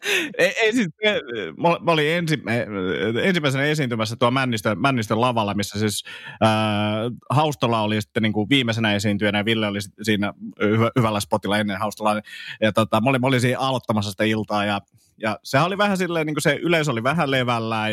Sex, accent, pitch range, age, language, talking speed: male, native, 110-140 Hz, 30-49, Finnish, 175 wpm